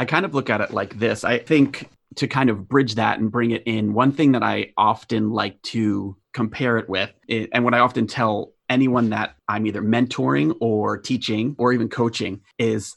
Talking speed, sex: 210 wpm, male